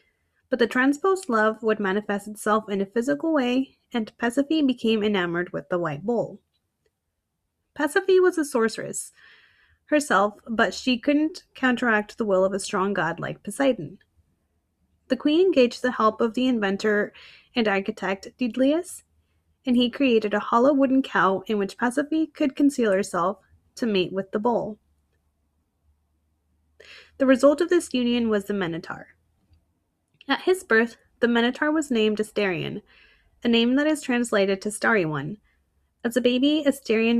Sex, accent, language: female, American, English